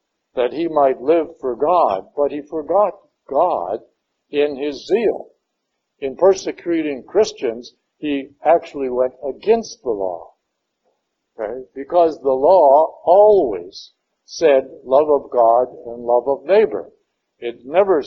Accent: American